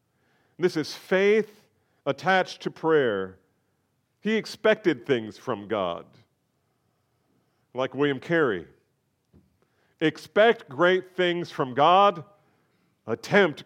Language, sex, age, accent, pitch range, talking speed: English, male, 40-59, American, 105-155 Hz, 90 wpm